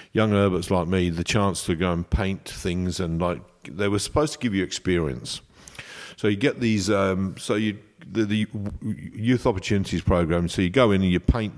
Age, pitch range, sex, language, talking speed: 50-69, 90-110 Hz, male, English, 200 wpm